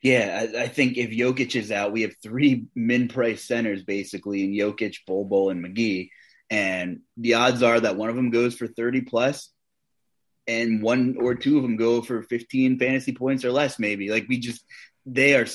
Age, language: 20-39, English